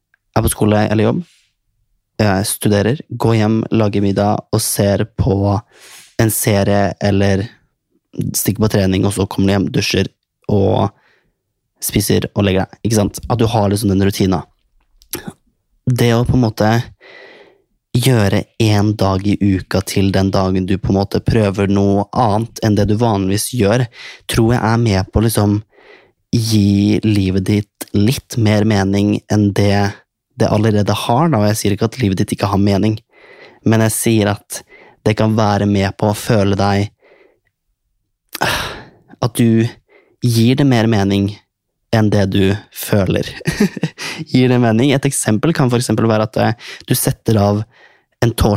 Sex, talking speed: male, 150 wpm